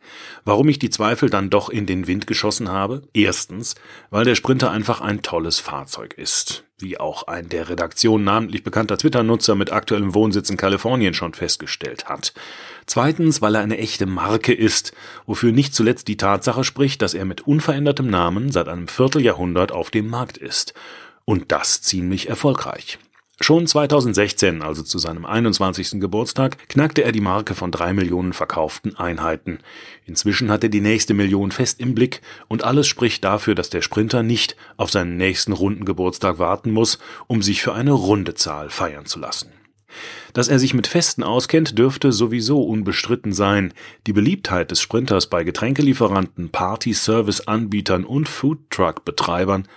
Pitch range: 100-125 Hz